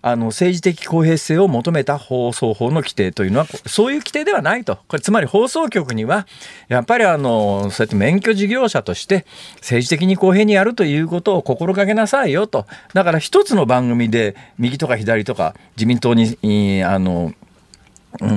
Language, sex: Japanese, male